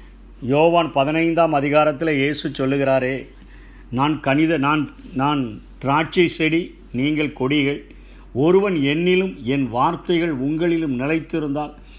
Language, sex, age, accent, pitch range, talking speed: Tamil, male, 50-69, native, 135-175 Hz, 95 wpm